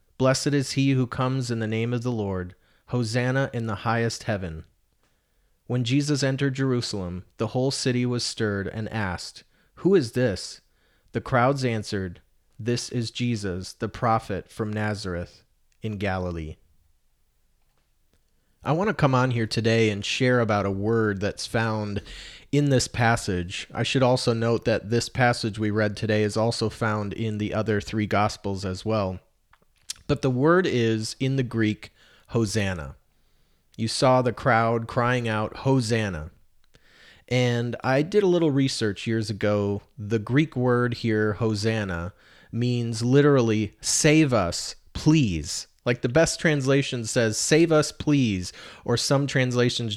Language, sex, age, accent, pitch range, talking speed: English, male, 30-49, American, 105-125 Hz, 150 wpm